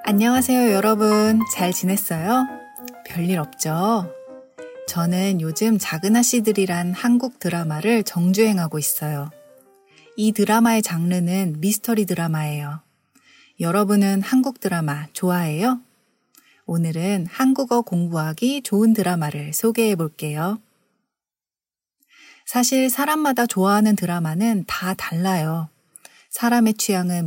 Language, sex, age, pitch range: Korean, female, 40-59, 170-235 Hz